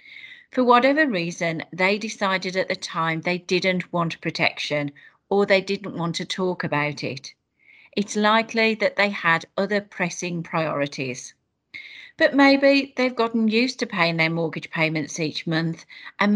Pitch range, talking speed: 165-215 Hz, 150 wpm